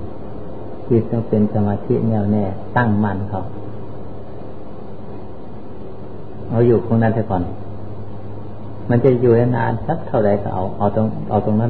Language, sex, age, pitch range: Thai, male, 60-79, 105-110 Hz